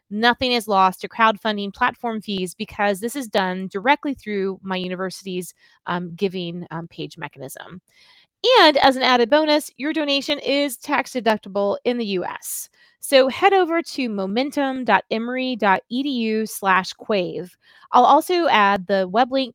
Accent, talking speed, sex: American, 140 wpm, female